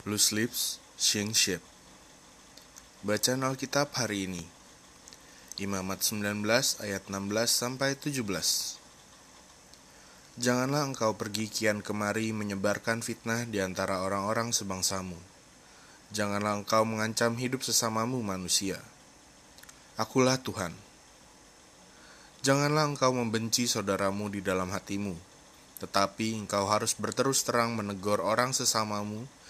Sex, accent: male, native